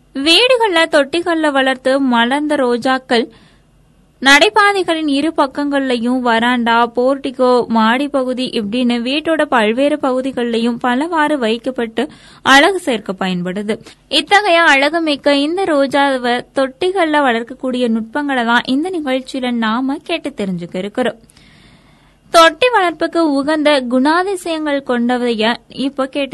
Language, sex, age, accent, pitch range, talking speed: Tamil, female, 20-39, native, 240-295 Hz, 90 wpm